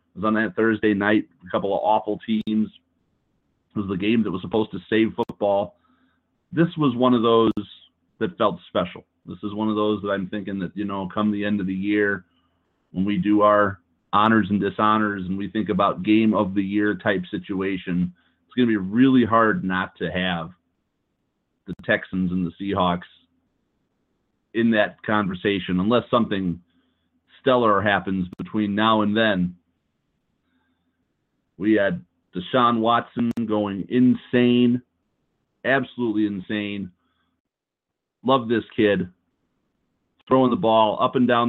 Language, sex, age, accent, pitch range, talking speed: English, male, 30-49, American, 95-110 Hz, 150 wpm